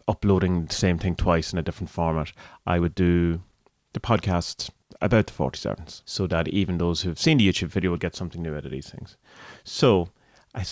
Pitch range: 90-115 Hz